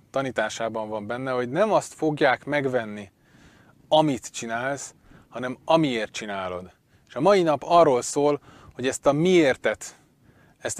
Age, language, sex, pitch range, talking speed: 30-49, Hungarian, male, 120-155 Hz, 135 wpm